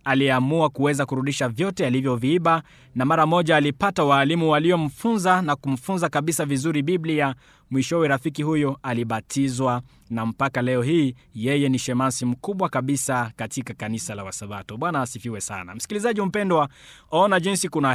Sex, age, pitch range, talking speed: male, 20-39, 130-165 Hz, 140 wpm